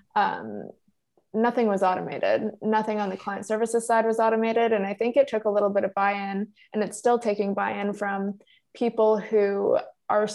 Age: 20-39